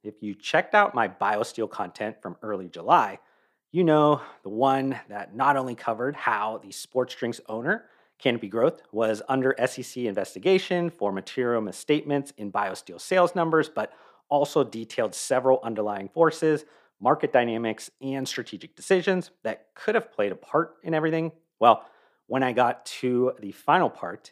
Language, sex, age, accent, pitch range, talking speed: English, male, 40-59, American, 110-155 Hz, 155 wpm